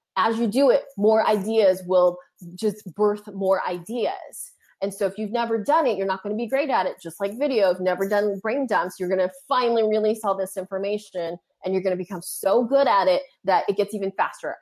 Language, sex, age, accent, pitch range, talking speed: English, female, 20-39, American, 190-250 Hz, 230 wpm